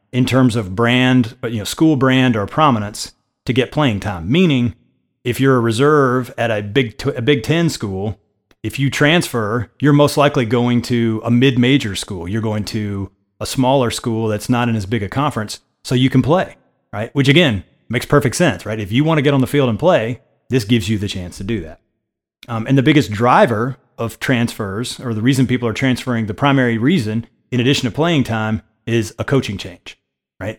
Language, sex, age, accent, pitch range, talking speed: English, male, 30-49, American, 105-130 Hz, 205 wpm